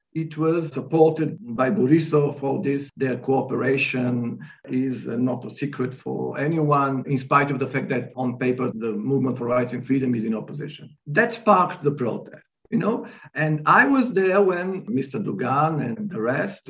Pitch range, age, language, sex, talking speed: 125-200 Hz, 50-69, Turkish, male, 175 wpm